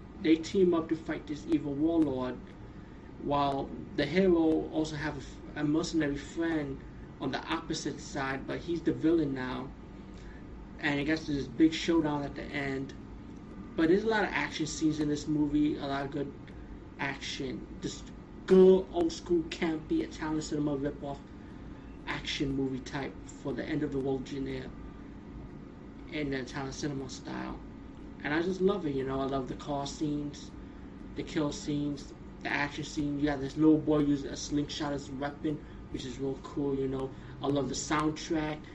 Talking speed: 175 wpm